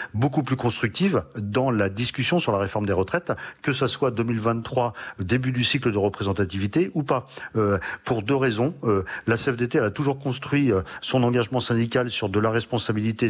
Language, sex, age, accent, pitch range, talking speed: French, male, 40-59, French, 105-130 Hz, 185 wpm